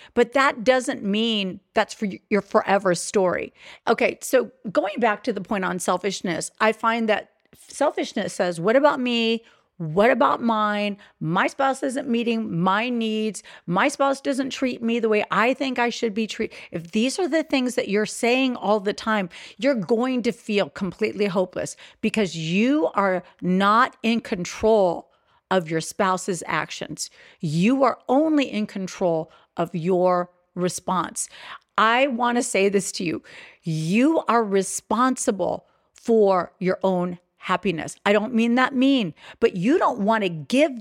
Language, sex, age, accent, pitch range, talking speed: English, female, 40-59, American, 190-245 Hz, 155 wpm